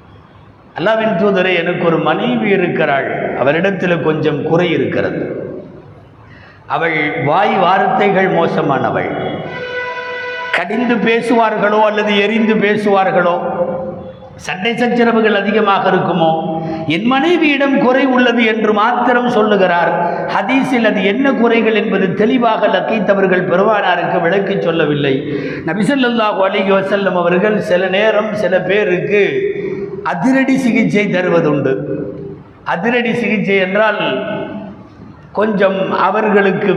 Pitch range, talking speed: 185-235 Hz, 95 wpm